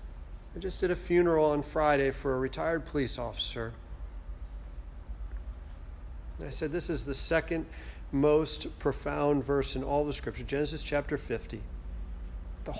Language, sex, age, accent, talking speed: English, male, 40-59, American, 135 wpm